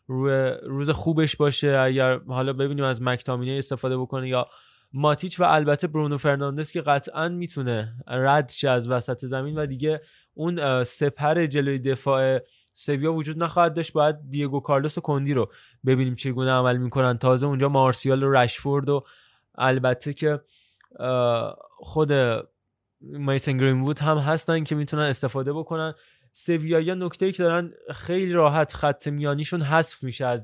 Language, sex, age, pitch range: Persian, male, 20-39, 130-150 Hz